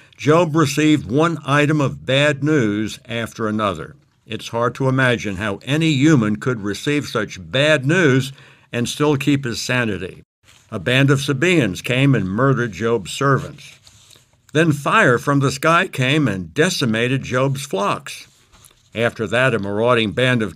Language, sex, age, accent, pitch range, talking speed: English, male, 60-79, American, 115-150 Hz, 150 wpm